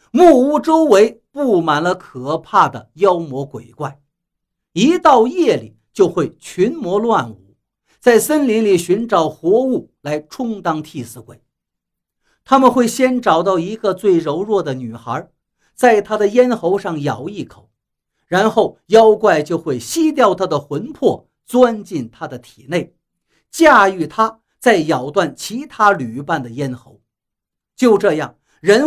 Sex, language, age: male, Chinese, 50-69